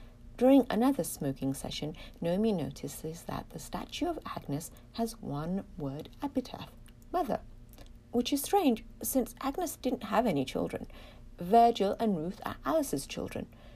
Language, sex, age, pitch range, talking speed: English, female, 60-79, 140-200 Hz, 135 wpm